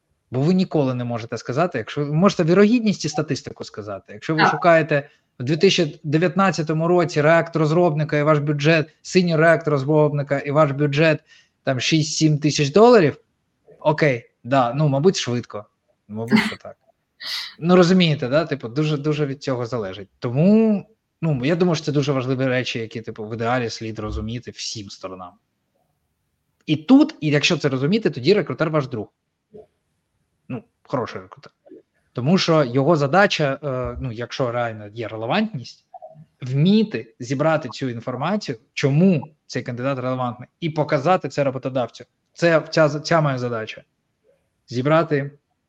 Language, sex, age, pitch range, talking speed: Ukrainian, male, 20-39, 125-165 Hz, 135 wpm